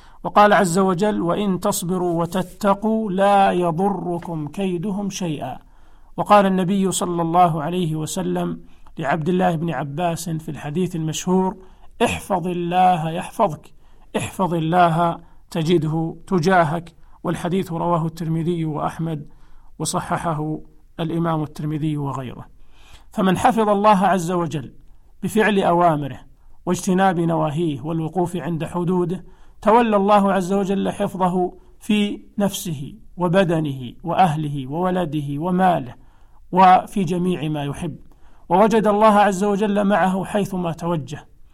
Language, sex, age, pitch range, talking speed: Arabic, male, 50-69, 160-190 Hz, 105 wpm